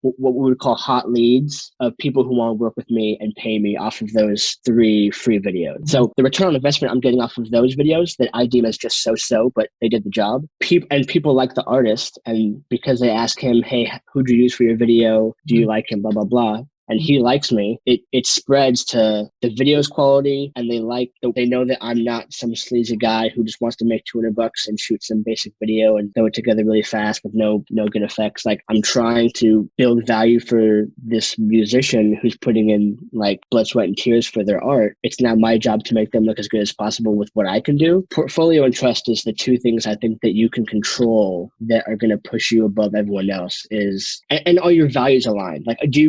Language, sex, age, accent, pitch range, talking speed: English, male, 10-29, American, 110-130 Hz, 240 wpm